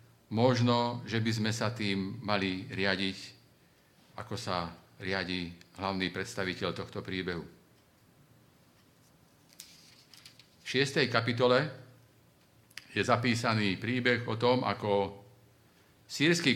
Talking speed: 90 wpm